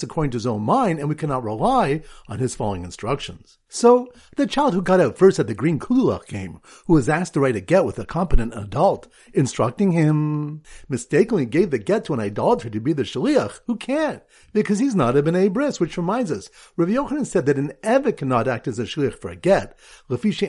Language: English